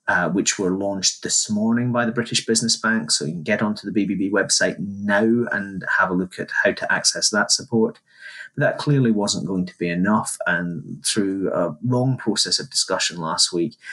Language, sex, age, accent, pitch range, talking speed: English, male, 30-49, British, 90-110 Hz, 200 wpm